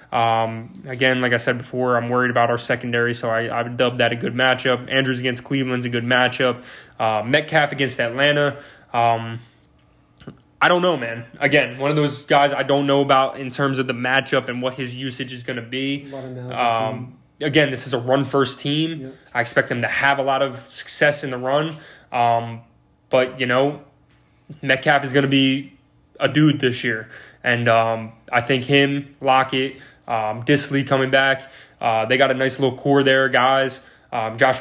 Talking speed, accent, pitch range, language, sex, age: 190 wpm, American, 120-135 Hz, English, male, 20-39